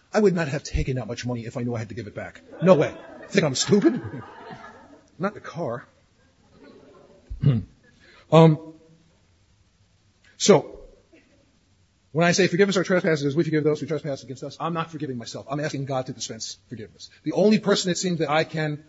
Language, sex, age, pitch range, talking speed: English, male, 40-59, 135-190 Hz, 185 wpm